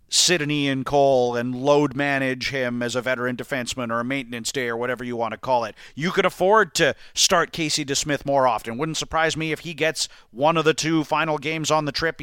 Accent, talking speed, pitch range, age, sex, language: American, 230 wpm, 140-185 Hz, 40-59, male, English